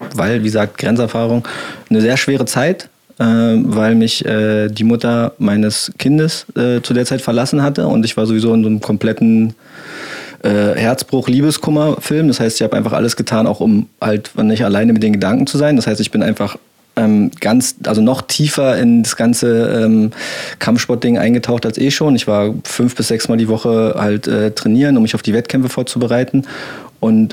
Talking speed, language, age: 190 wpm, German, 20-39